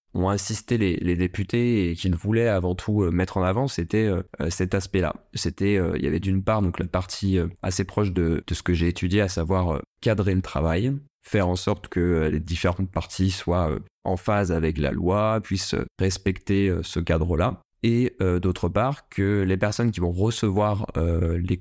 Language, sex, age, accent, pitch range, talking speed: French, male, 20-39, French, 90-105 Hz, 210 wpm